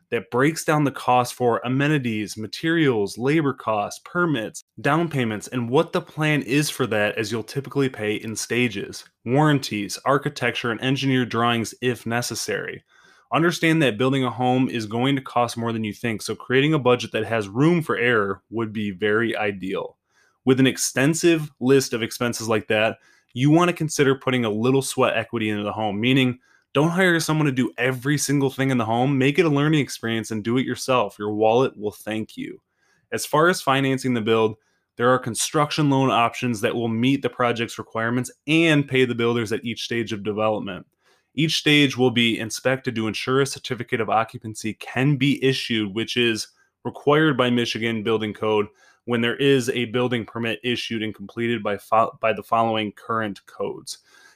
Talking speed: 185 wpm